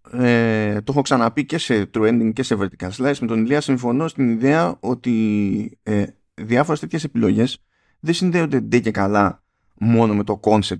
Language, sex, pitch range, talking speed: Greek, male, 100-140 Hz, 165 wpm